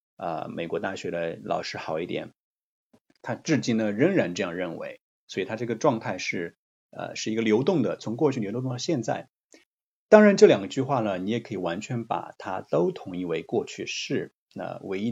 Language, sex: Chinese, male